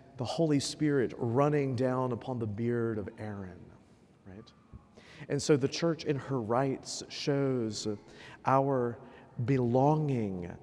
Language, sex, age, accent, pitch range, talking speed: English, male, 50-69, American, 115-140 Hz, 120 wpm